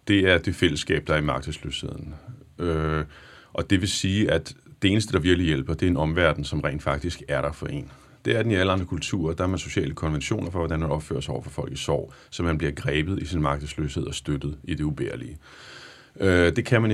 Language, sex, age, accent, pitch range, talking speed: Danish, male, 30-49, native, 80-95 Hz, 235 wpm